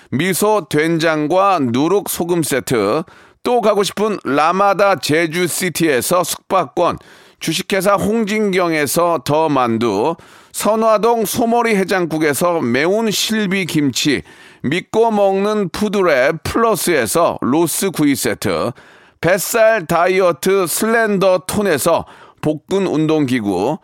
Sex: male